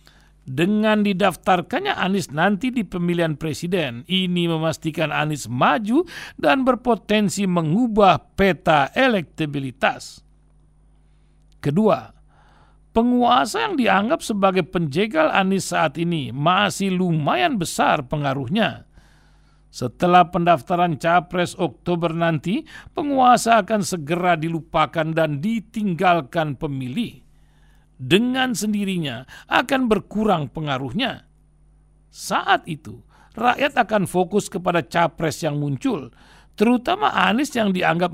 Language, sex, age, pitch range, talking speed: Indonesian, male, 50-69, 155-210 Hz, 95 wpm